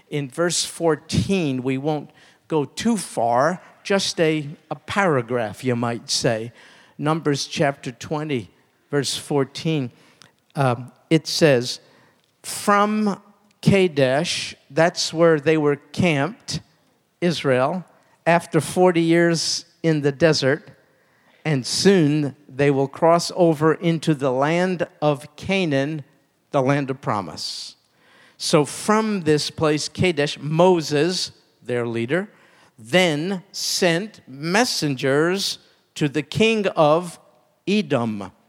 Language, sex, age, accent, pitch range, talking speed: English, male, 50-69, American, 135-175 Hz, 105 wpm